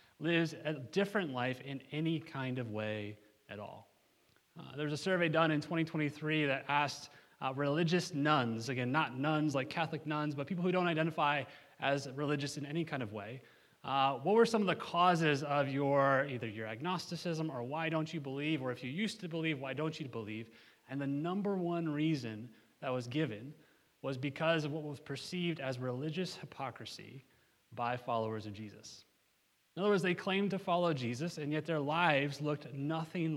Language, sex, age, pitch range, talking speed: English, male, 30-49, 130-160 Hz, 185 wpm